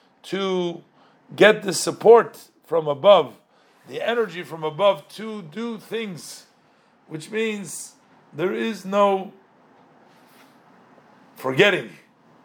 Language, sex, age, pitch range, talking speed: English, male, 50-69, 160-215 Hz, 90 wpm